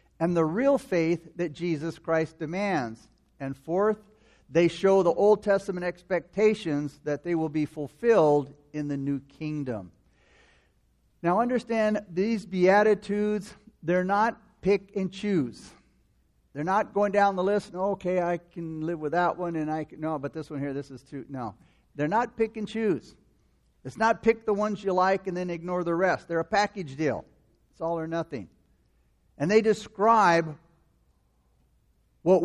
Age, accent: 60-79, American